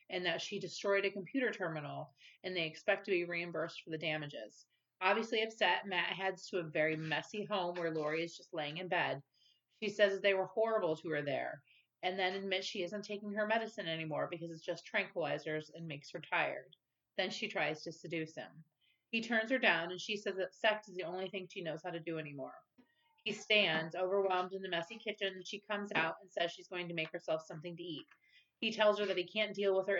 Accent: American